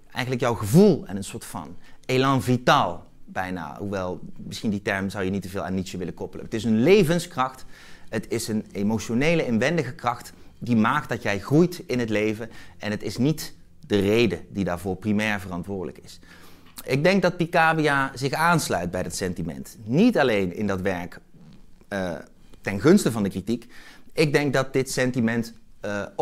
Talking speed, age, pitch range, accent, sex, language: 180 wpm, 30-49, 95-135 Hz, Dutch, male, Dutch